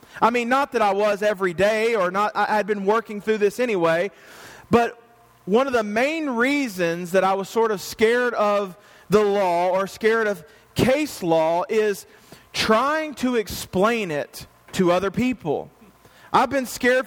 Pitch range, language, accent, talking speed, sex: 180-225 Hz, English, American, 170 wpm, male